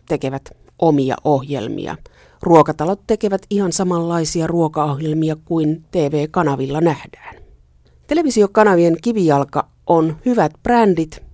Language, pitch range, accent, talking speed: Finnish, 145-180 Hz, native, 85 wpm